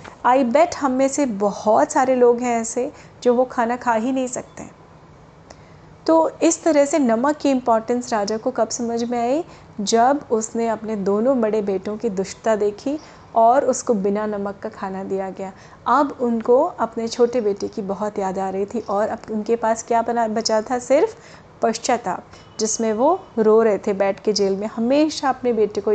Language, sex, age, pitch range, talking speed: Hindi, female, 30-49, 215-260 Hz, 190 wpm